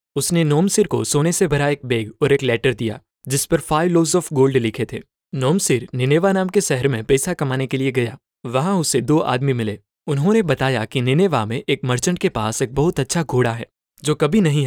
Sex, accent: male, native